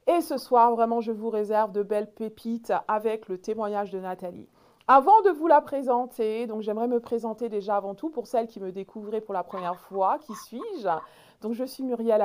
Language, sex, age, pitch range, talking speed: French, female, 50-69, 210-275 Hz, 205 wpm